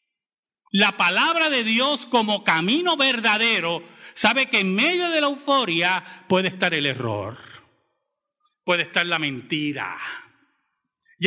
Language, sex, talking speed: Spanish, male, 120 wpm